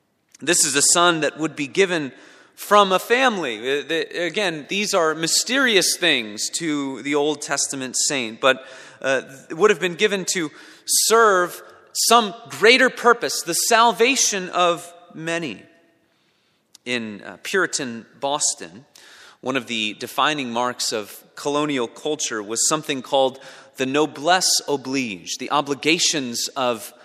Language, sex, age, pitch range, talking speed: English, male, 30-49, 135-185 Hz, 125 wpm